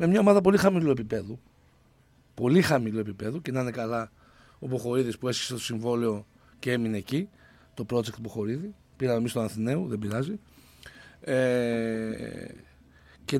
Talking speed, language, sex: 145 wpm, Greek, male